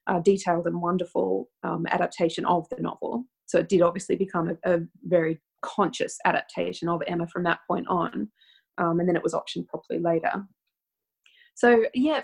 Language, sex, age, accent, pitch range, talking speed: English, female, 20-39, Australian, 180-220 Hz, 170 wpm